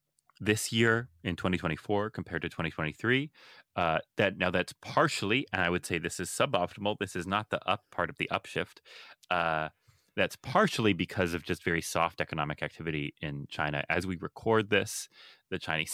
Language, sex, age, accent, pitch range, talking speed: English, male, 30-49, American, 85-105 Hz, 175 wpm